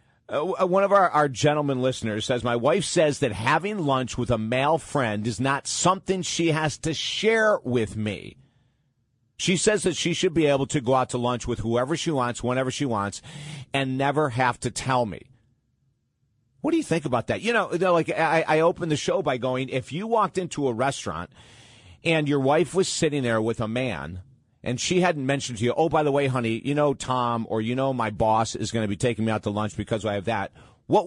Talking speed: 225 wpm